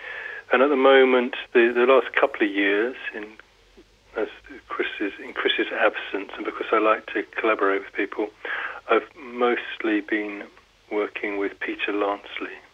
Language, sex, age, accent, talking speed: German, male, 40-59, British, 135 wpm